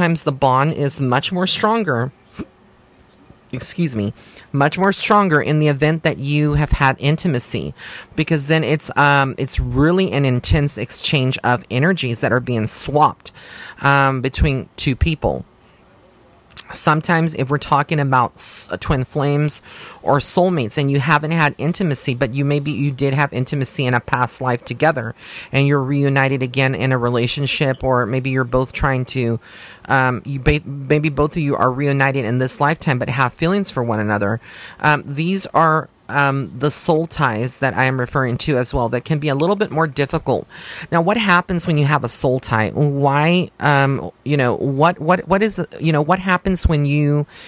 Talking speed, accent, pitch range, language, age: 180 wpm, American, 130-155 Hz, English, 30-49